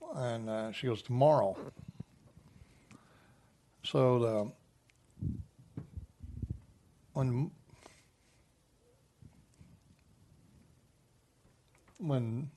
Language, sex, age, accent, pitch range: English, male, 60-79, American, 115-140 Hz